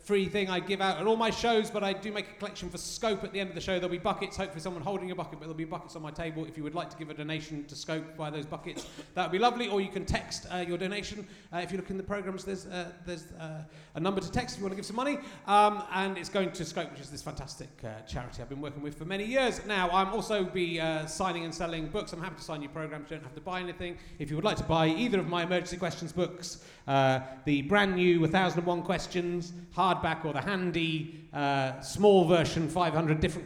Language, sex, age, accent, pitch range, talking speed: English, male, 30-49, British, 160-205 Hz, 275 wpm